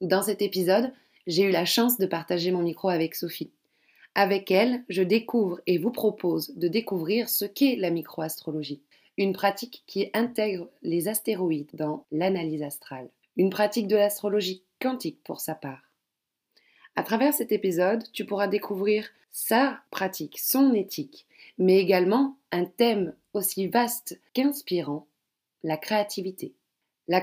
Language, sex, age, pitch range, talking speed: French, female, 20-39, 170-220 Hz, 140 wpm